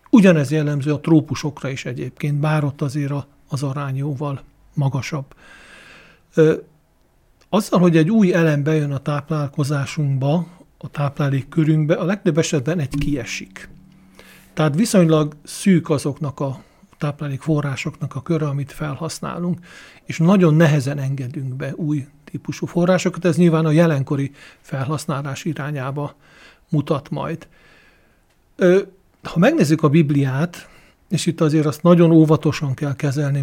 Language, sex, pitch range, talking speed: Hungarian, male, 145-170 Hz, 120 wpm